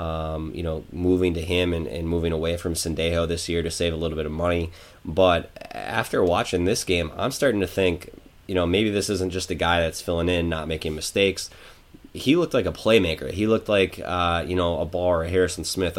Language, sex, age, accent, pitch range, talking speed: English, male, 20-39, American, 80-90 Hz, 225 wpm